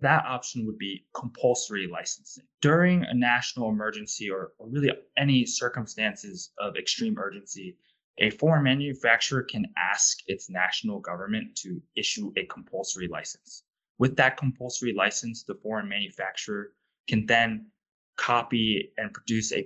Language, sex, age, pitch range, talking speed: English, male, 20-39, 110-145 Hz, 130 wpm